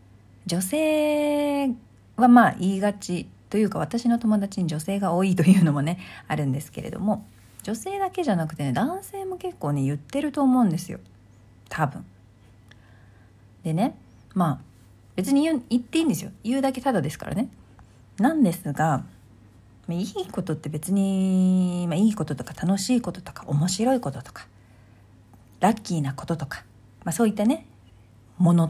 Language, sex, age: Japanese, female, 40-59